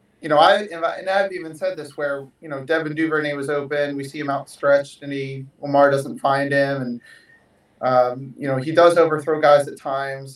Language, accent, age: English, American, 30-49